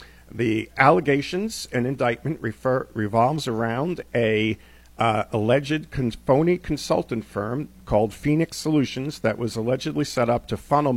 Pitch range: 100-130 Hz